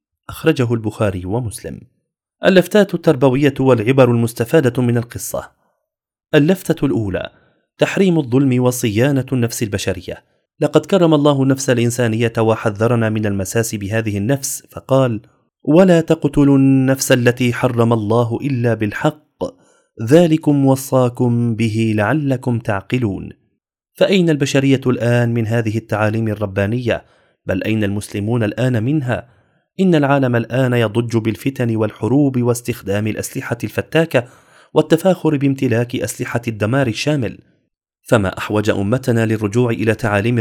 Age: 30-49